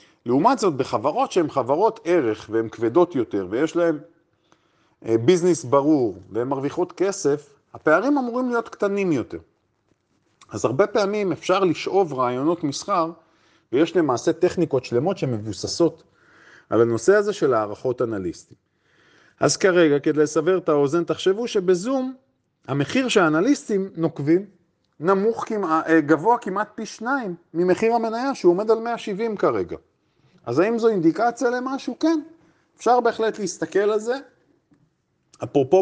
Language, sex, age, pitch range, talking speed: Hebrew, male, 40-59, 145-210 Hz, 125 wpm